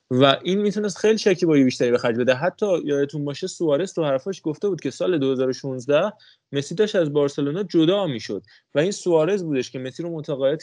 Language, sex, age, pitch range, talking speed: Persian, male, 20-39, 135-165 Hz, 185 wpm